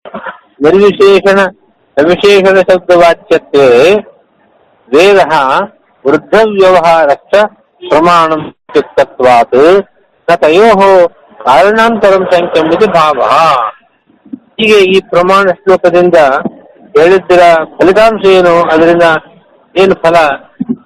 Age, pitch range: 50-69, 170-205 Hz